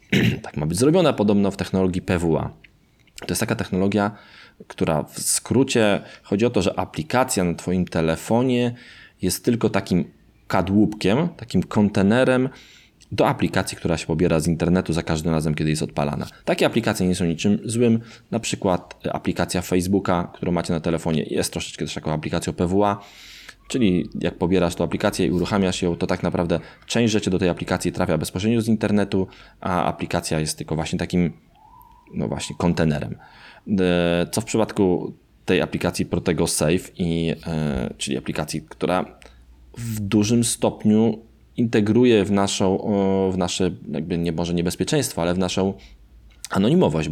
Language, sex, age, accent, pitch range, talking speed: Polish, male, 20-39, native, 85-105 Hz, 150 wpm